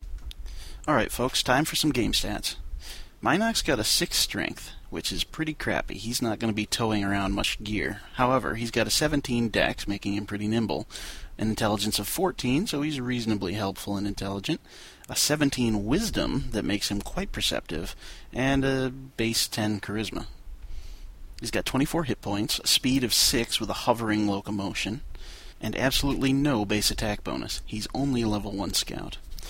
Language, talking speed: English, 170 wpm